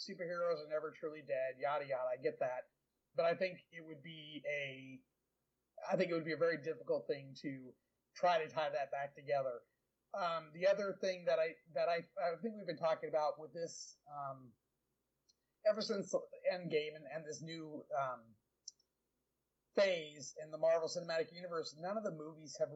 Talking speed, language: 180 wpm, English